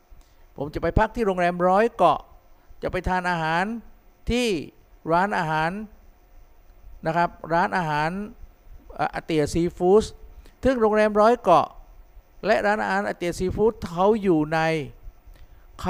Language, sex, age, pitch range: Thai, male, 50-69, 145-200 Hz